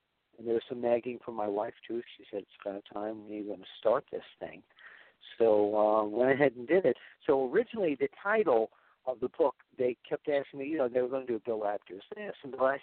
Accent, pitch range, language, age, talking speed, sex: American, 115-160 Hz, English, 50-69, 245 wpm, male